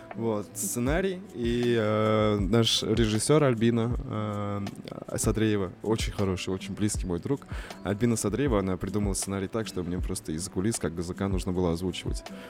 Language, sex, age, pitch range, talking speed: Russian, male, 20-39, 100-115 Hz, 145 wpm